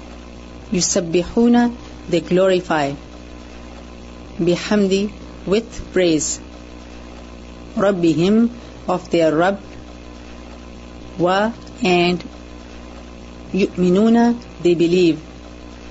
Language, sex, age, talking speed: English, female, 40-59, 55 wpm